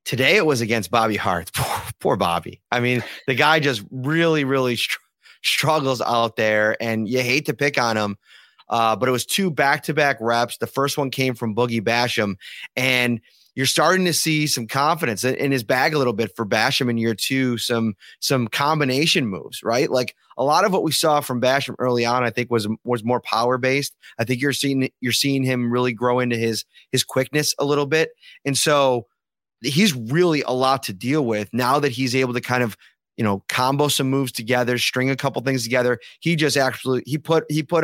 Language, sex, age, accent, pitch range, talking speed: English, male, 30-49, American, 120-140 Hz, 210 wpm